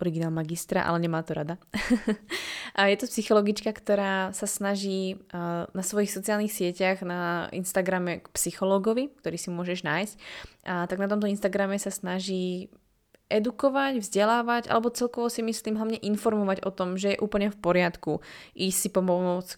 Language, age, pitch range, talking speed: Slovak, 20-39, 175-205 Hz, 155 wpm